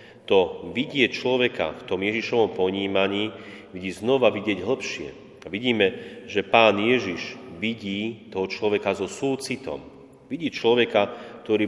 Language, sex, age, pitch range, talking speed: Slovak, male, 30-49, 95-110 Hz, 125 wpm